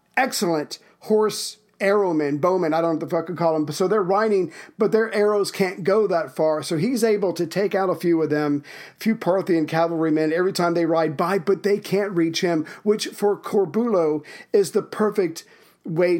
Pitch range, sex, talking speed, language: 165-200 Hz, male, 200 wpm, English